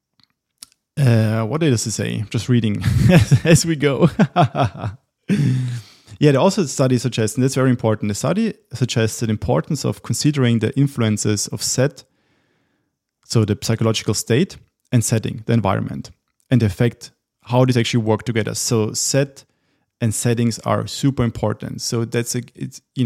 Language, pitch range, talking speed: English, 110-130 Hz, 150 wpm